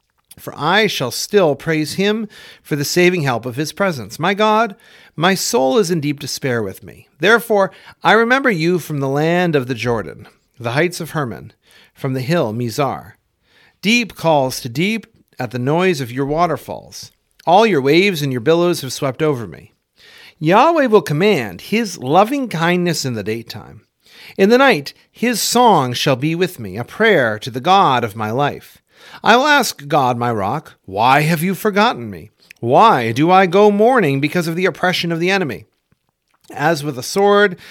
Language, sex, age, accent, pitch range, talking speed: English, male, 40-59, American, 130-200 Hz, 180 wpm